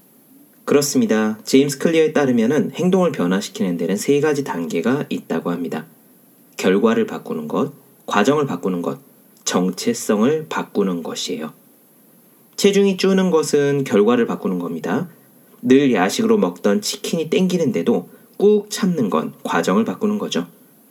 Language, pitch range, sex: Korean, 140-230 Hz, male